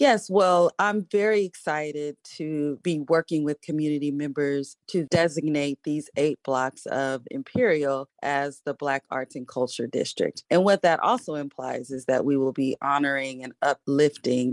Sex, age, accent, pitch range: female, 30-49, American, 140-165 Hz